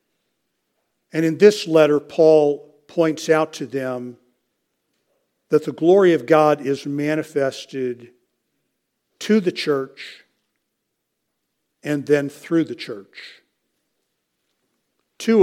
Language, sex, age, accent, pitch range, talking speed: English, male, 60-79, American, 125-150 Hz, 95 wpm